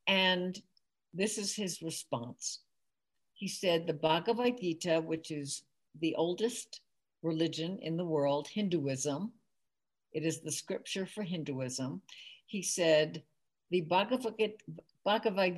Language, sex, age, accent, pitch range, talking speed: English, female, 60-79, American, 160-215 Hz, 110 wpm